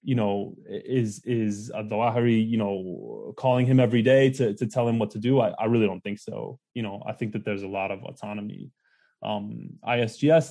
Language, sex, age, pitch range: English, male, 20-39, 105-125 Hz